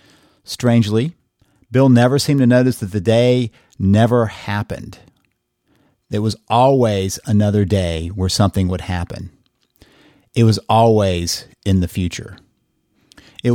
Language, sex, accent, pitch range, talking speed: English, male, American, 100-140 Hz, 120 wpm